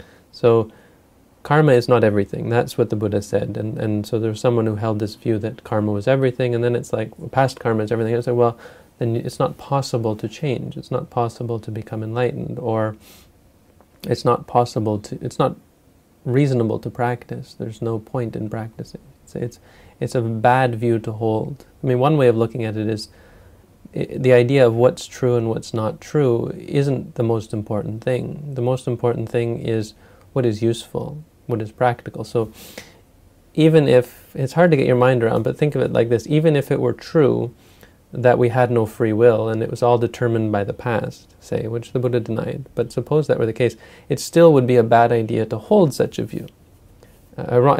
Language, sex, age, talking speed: English, male, 30-49, 210 wpm